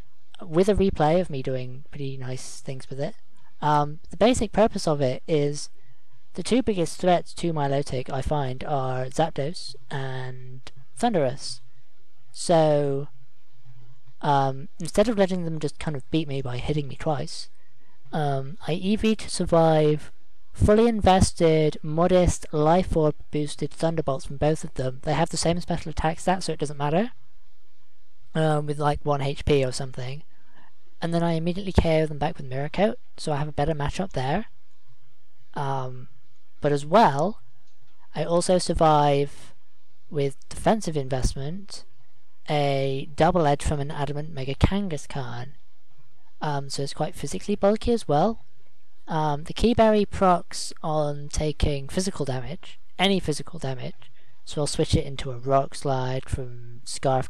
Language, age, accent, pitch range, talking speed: English, 20-39, British, 130-165 Hz, 150 wpm